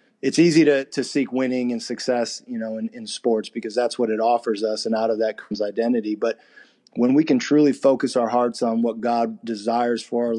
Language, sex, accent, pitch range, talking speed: English, male, American, 120-140 Hz, 225 wpm